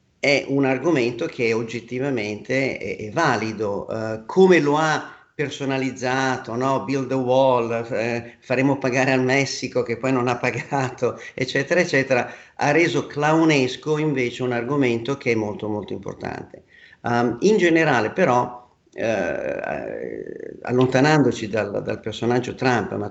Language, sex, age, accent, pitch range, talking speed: Italian, male, 50-69, native, 115-135 Hz, 135 wpm